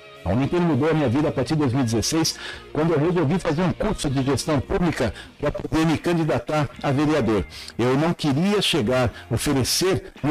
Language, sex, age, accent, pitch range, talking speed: Portuguese, male, 60-79, Brazilian, 125-165 Hz, 175 wpm